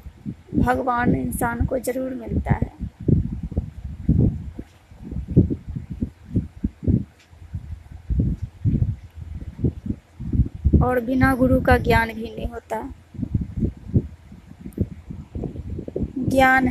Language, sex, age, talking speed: Hindi, female, 20-39, 55 wpm